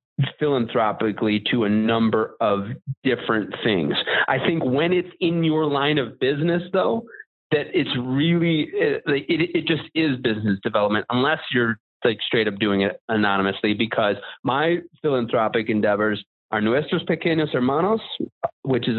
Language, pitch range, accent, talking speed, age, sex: English, 110-150 Hz, American, 140 wpm, 30-49, male